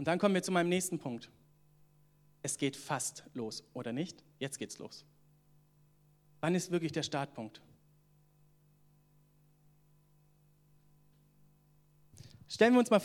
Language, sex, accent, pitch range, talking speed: German, male, German, 150-170 Hz, 120 wpm